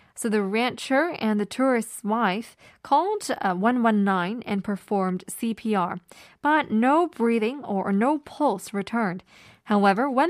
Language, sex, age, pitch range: Korean, female, 20-39, 195-265 Hz